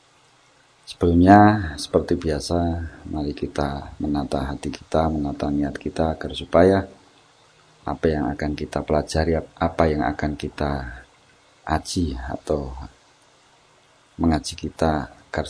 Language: English